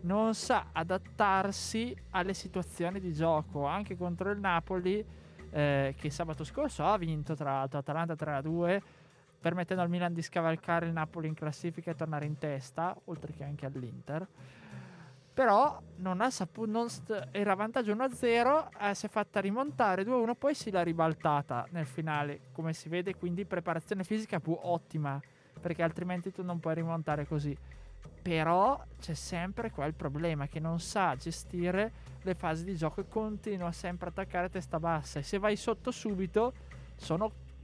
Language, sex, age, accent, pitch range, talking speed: Italian, male, 20-39, native, 150-190 Hz, 150 wpm